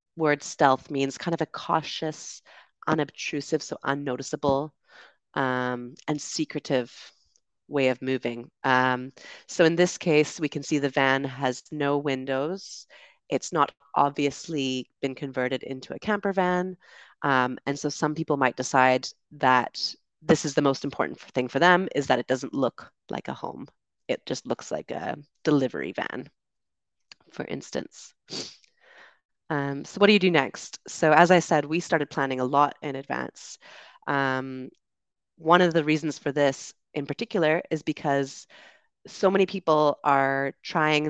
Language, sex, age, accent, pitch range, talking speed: English, female, 30-49, American, 135-160 Hz, 155 wpm